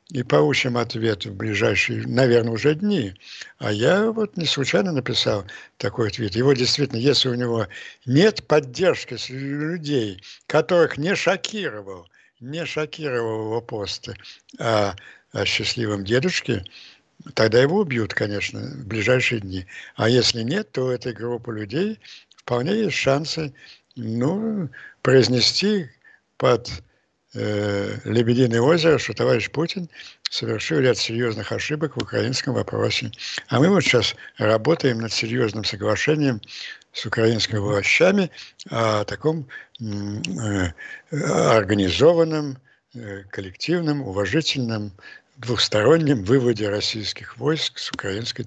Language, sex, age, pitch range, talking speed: Russian, male, 60-79, 110-145 Hz, 115 wpm